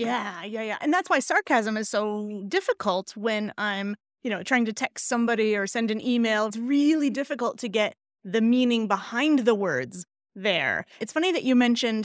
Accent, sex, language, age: American, female, English, 20-39